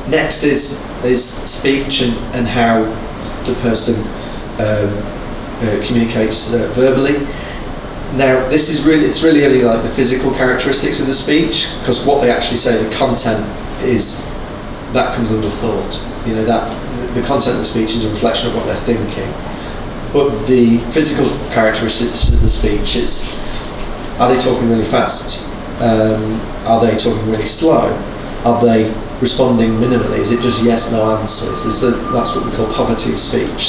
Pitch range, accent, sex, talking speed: 110-125 Hz, British, male, 160 wpm